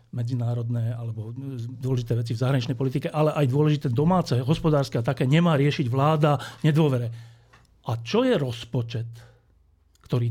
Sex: male